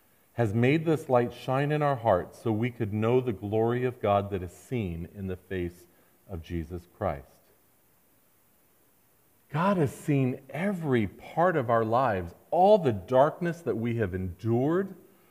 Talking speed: 155 wpm